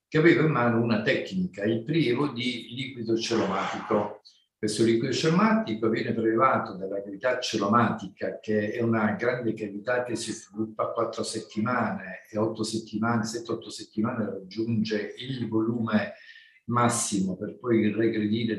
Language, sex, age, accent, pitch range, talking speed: Italian, male, 50-69, native, 110-145 Hz, 135 wpm